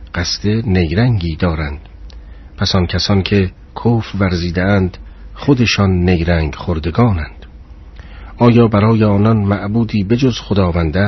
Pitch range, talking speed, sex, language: 85-105 Hz, 95 wpm, male, Persian